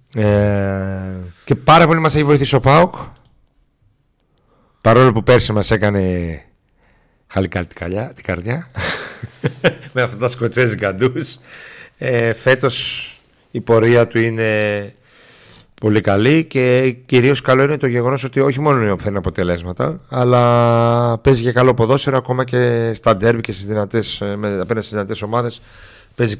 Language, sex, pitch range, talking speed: Greek, male, 100-125 Hz, 135 wpm